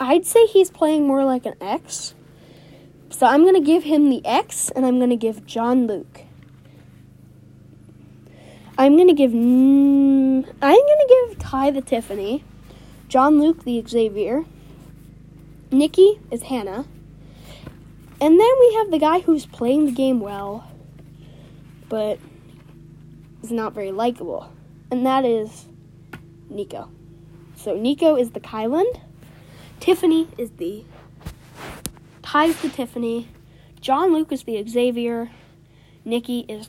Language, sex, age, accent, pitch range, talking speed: English, female, 10-29, American, 205-300 Hz, 125 wpm